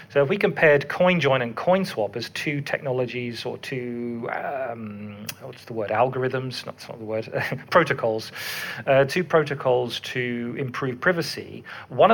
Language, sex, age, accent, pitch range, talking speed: English, male, 40-59, British, 115-140 Hz, 145 wpm